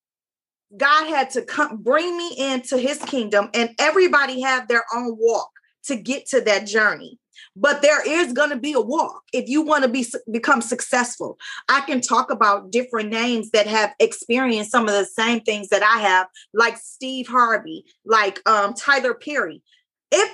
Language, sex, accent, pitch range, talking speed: English, female, American, 225-290 Hz, 175 wpm